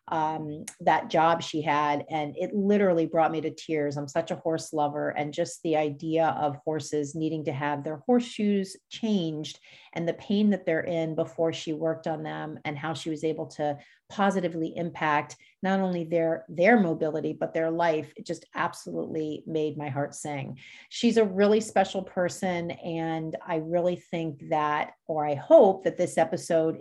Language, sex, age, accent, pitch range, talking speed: English, female, 40-59, American, 155-180 Hz, 175 wpm